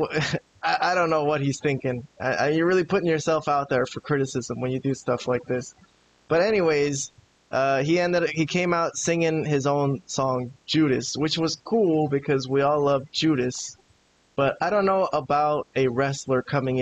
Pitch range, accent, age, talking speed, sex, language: 130-150 Hz, American, 20-39, 170 wpm, male, English